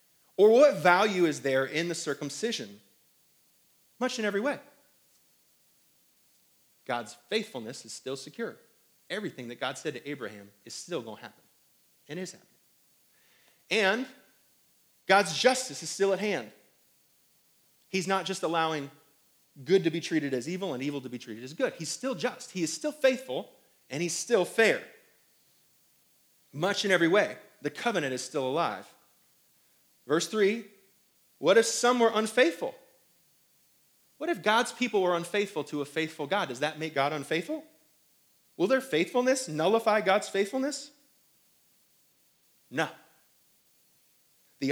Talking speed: 140 wpm